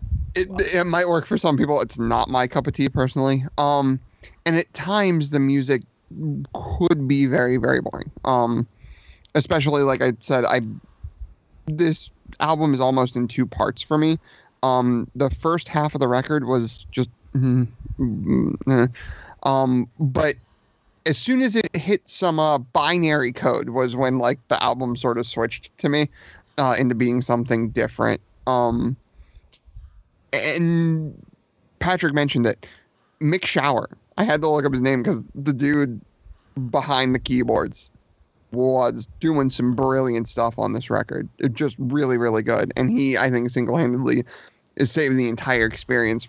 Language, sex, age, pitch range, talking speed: English, male, 30-49, 120-150 Hz, 155 wpm